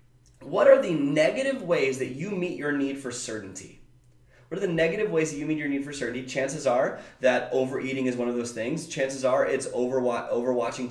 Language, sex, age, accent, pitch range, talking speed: English, male, 30-49, American, 130-180 Hz, 205 wpm